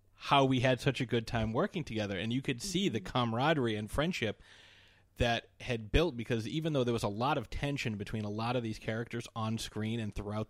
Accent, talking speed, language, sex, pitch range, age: American, 225 wpm, English, male, 95-115 Hz, 30-49